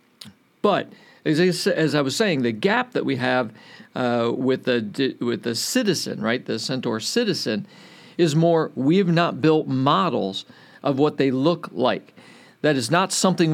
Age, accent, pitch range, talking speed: 50-69, American, 140-185 Hz, 160 wpm